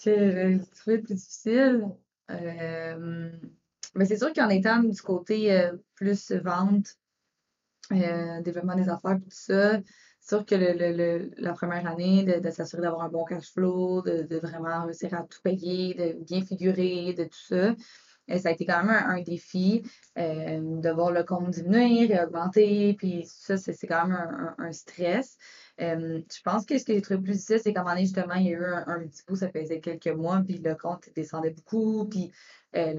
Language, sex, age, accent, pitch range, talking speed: French, female, 20-39, Canadian, 165-195 Hz, 210 wpm